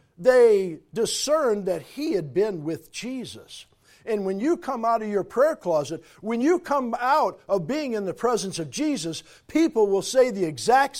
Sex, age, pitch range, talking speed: male, 50-69, 175-255 Hz, 180 wpm